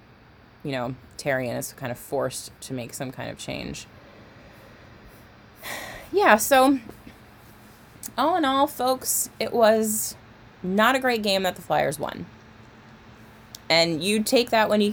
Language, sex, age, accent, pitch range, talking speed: English, female, 20-39, American, 120-195 Hz, 140 wpm